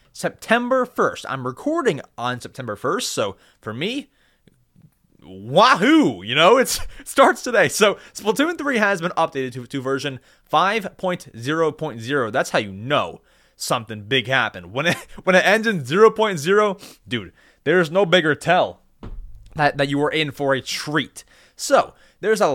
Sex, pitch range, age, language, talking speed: male, 135-220 Hz, 30-49, English, 150 wpm